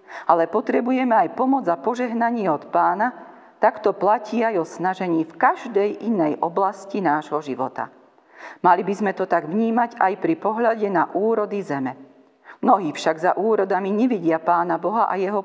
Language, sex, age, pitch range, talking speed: Slovak, female, 40-59, 165-225 Hz, 155 wpm